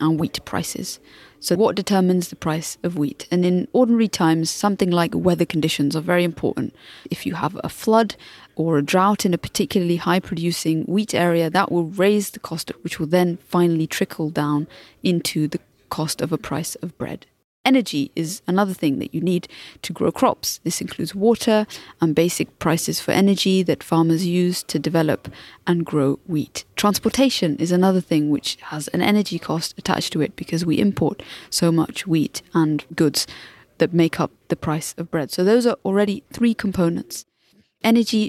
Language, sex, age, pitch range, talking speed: English, female, 30-49, 160-195 Hz, 180 wpm